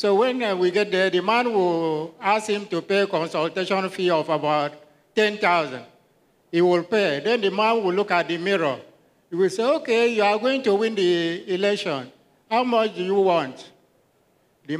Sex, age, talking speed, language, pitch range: male, 50-69, 185 wpm, English, 175-215 Hz